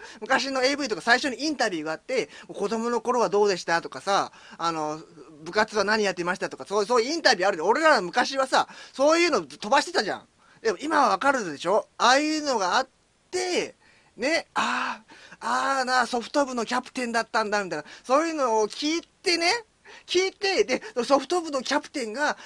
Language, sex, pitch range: Japanese, male, 215-310 Hz